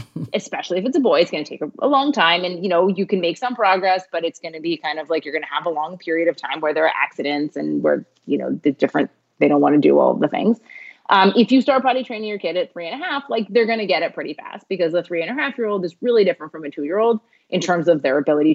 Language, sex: English, female